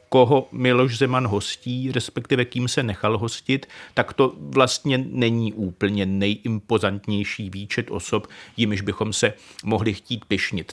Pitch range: 120-140 Hz